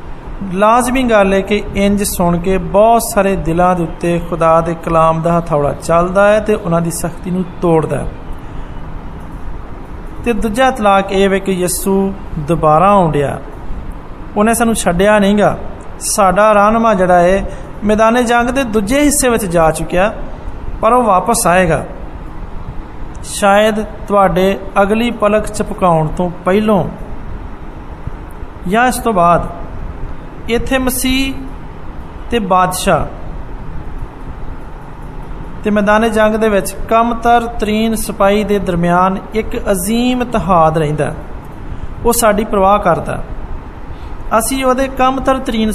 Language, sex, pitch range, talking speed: Hindi, male, 170-220 Hz, 100 wpm